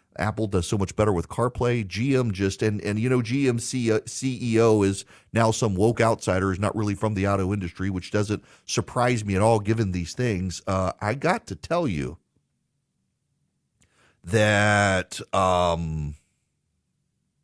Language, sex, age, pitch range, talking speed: English, male, 40-59, 95-130 Hz, 150 wpm